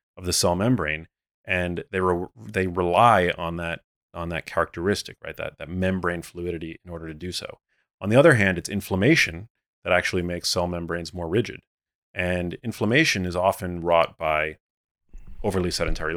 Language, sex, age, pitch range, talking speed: English, male, 30-49, 80-95 Hz, 165 wpm